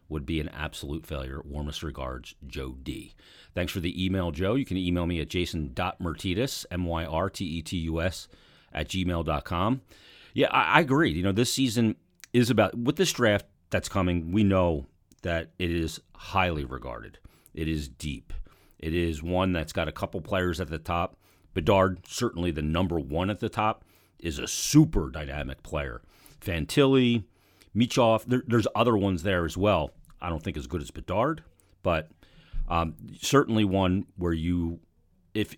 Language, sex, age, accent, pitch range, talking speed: English, male, 40-59, American, 80-105 Hz, 160 wpm